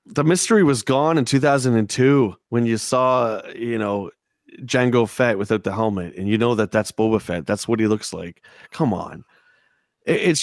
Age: 30-49